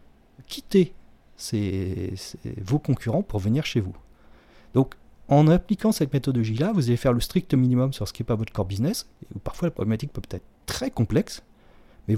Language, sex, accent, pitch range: French, male, French, 115-150 Hz